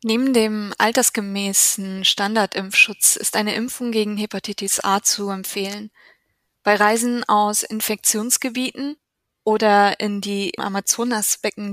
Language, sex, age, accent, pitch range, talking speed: German, female, 20-39, German, 195-220 Hz, 105 wpm